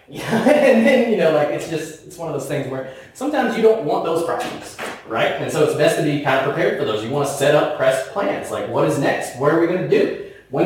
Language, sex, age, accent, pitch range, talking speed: English, male, 20-39, American, 140-210 Hz, 275 wpm